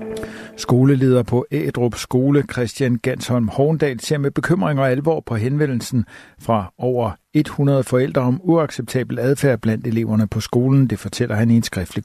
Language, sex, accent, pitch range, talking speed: Danish, male, native, 110-135 Hz, 155 wpm